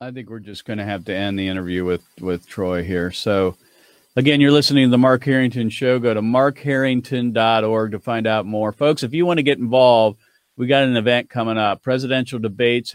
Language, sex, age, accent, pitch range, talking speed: English, male, 40-59, American, 115-135 Hz, 215 wpm